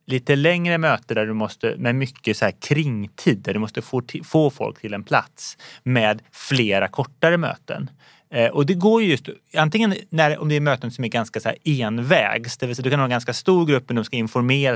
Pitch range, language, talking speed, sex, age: 115-155 Hz, Swedish, 220 wpm, male, 30-49